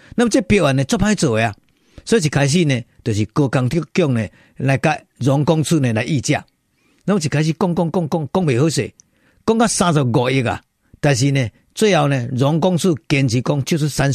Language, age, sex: Chinese, 50-69, male